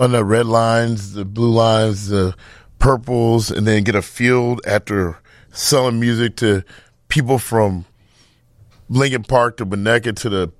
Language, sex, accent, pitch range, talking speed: English, male, American, 105-130 Hz, 145 wpm